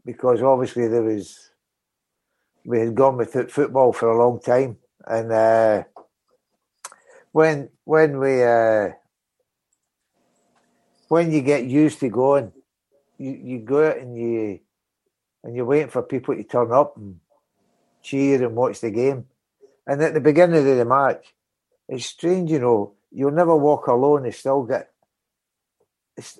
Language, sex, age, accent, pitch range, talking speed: English, male, 60-79, British, 115-145 Hz, 145 wpm